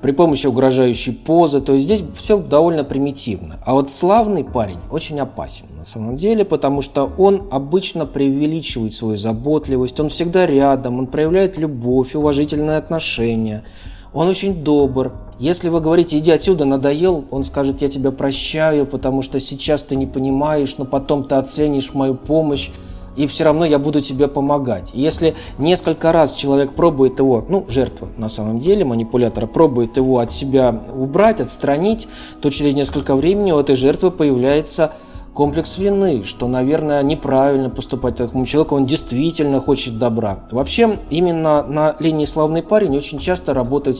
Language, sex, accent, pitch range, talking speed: Russian, male, native, 130-155 Hz, 155 wpm